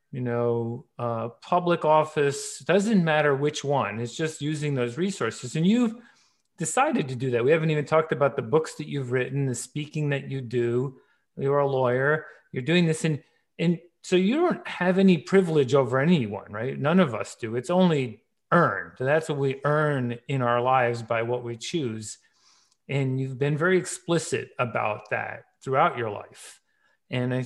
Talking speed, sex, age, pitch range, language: 180 wpm, male, 40-59, 125-170 Hz, English